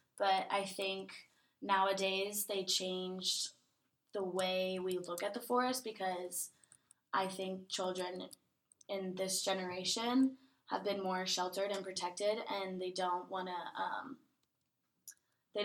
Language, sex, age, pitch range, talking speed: English, female, 20-39, 180-200 Hz, 125 wpm